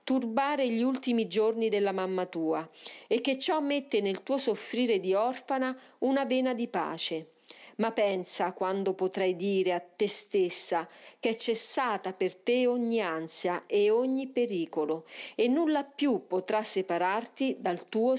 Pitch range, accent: 190-260 Hz, native